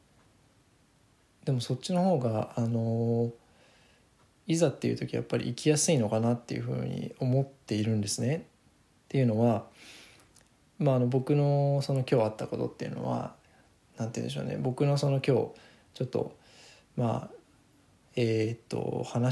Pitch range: 110-140 Hz